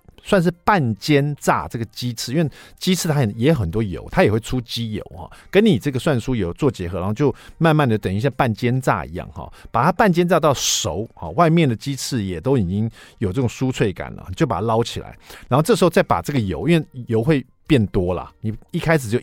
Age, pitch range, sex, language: 50-69, 110-155 Hz, male, Chinese